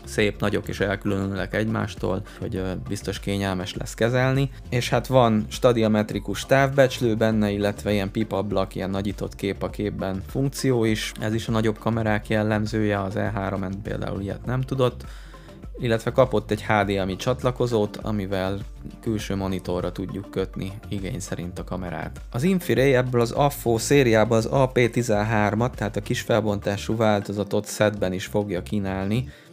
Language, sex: Hungarian, male